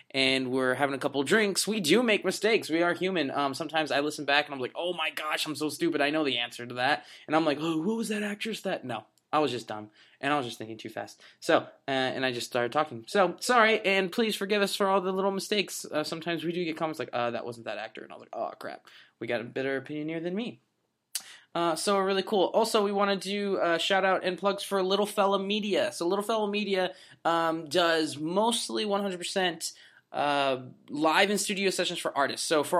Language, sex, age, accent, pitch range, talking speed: English, male, 20-39, American, 135-190 Hz, 240 wpm